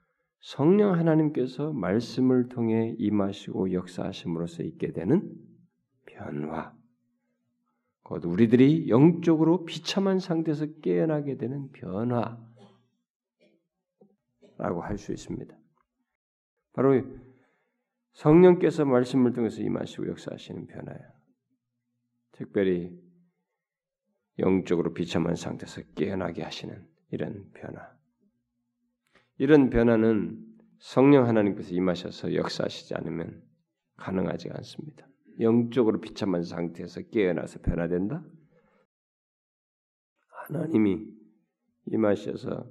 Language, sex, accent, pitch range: Korean, male, native, 105-170 Hz